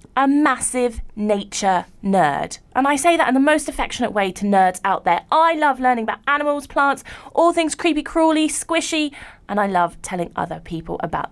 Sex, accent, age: female, British, 20-39